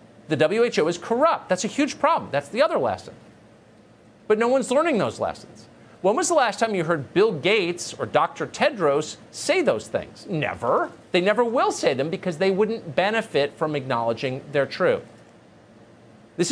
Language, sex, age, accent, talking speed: English, male, 40-59, American, 175 wpm